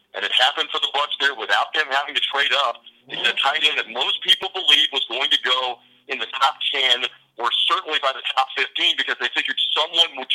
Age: 50-69